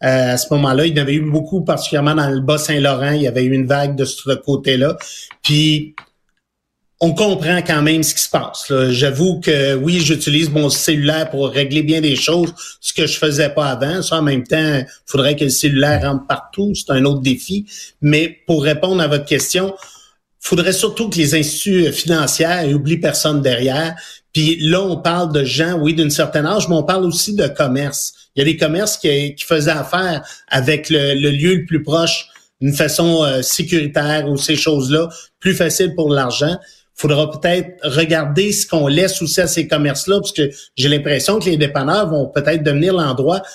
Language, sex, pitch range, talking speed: French, male, 145-170 Hz, 200 wpm